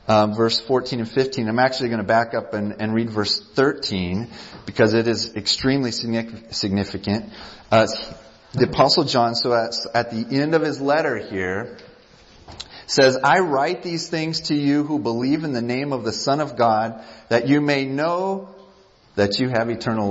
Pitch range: 120-165 Hz